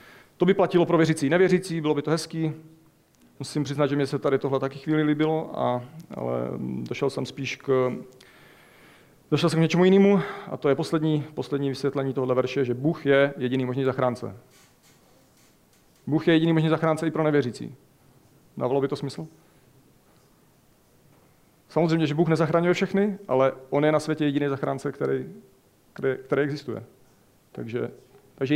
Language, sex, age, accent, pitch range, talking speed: Czech, male, 40-59, native, 135-160 Hz, 160 wpm